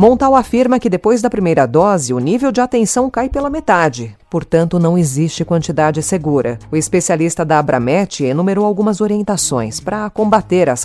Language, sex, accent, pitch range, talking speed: Portuguese, female, Brazilian, 155-215 Hz, 160 wpm